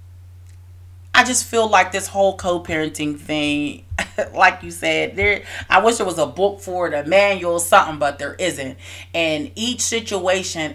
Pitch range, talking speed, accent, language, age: 145-235 Hz, 160 wpm, American, English, 30-49